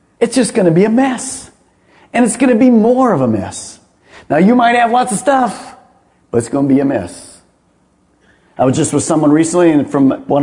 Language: English